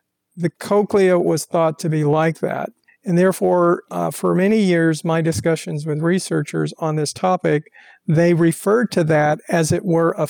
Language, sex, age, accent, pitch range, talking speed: English, male, 50-69, American, 155-180 Hz, 170 wpm